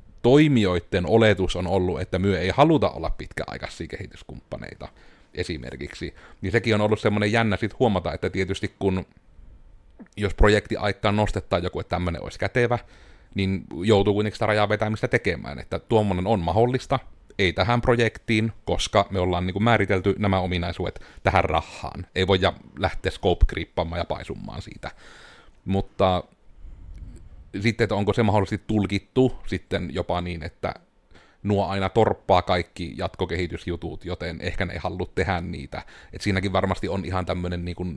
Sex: male